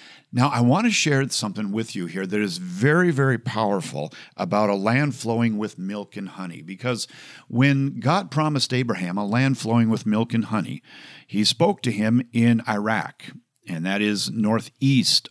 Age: 50-69